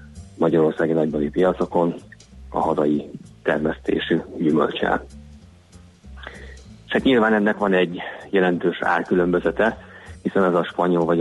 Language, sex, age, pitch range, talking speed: Hungarian, male, 30-49, 75-90 Hz, 105 wpm